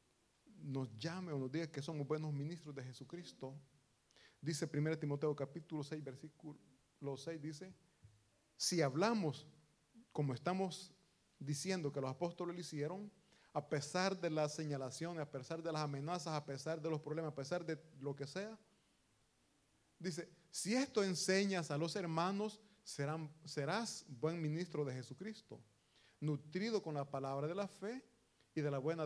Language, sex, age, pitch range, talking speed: Italian, male, 30-49, 140-185 Hz, 155 wpm